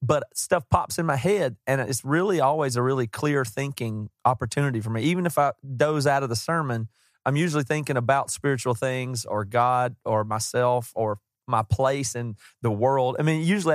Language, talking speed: English, 195 wpm